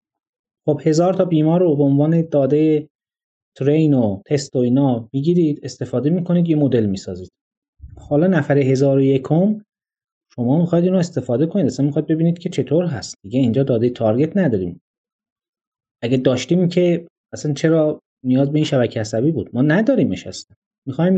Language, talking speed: Persian, 155 wpm